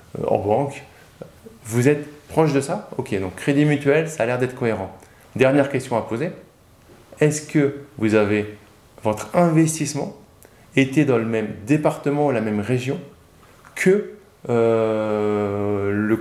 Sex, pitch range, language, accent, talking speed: male, 105-145 Hz, French, French, 140 wpm